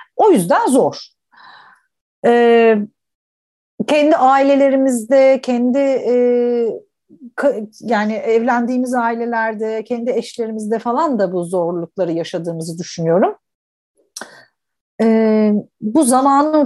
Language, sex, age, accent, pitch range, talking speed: English, female, 50-69, Turkish, 210-275 Hz, 85 wpm